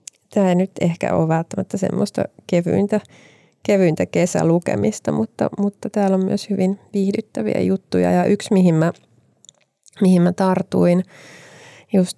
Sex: female